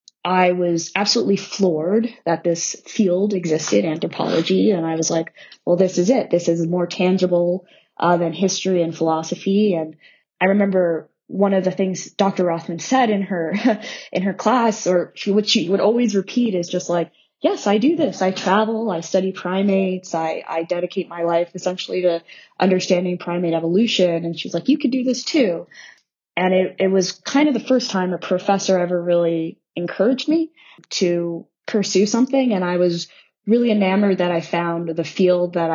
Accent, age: American, 20-39